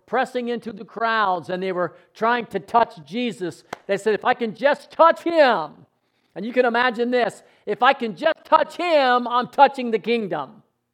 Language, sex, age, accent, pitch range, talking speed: English, male, 50-69, American, 195-255 Hz, 185 wpm